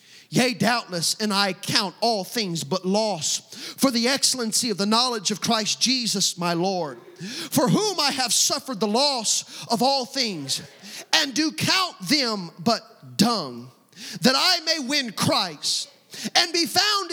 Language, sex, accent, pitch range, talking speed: English, male, American, 225-310 Hz, 155 wpm